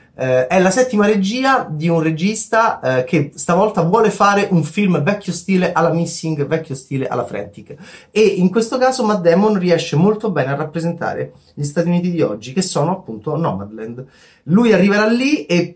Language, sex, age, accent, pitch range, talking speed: Italian, male, 30-49, native, 140-185 Hz, 180 wpm